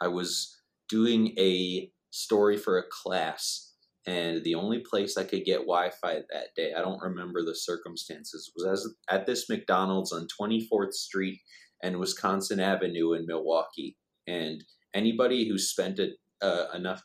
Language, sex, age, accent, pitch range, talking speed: English, male, 30-49, American, 90-115 Hz, 150 wpm